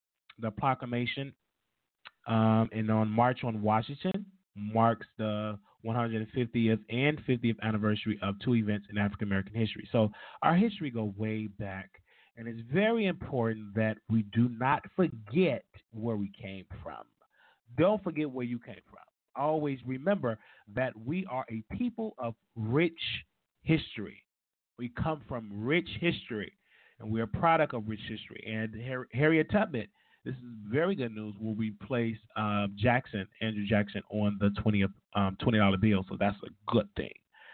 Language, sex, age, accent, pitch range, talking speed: English, male, 30-49, American, 105-130 Hz, 150 wpm